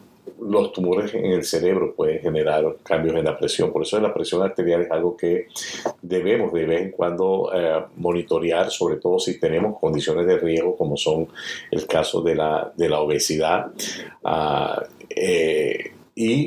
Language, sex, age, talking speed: Spanish, male, 50-69, 150 wpm